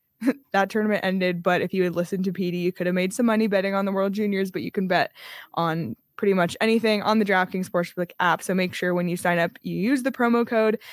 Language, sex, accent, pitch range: English, female, American, 180-215 Hz